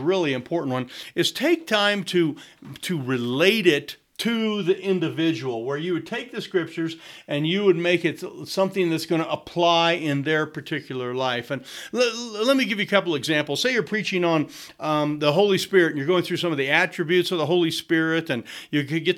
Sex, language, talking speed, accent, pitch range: male, English, 210 wpm, American, 145-185 Hz